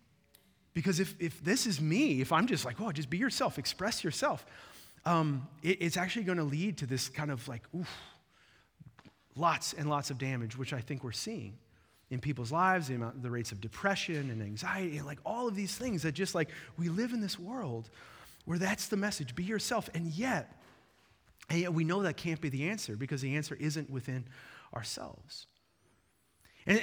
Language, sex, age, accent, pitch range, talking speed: English, male, 30-49, American, 125-185 Hz, 195 wpm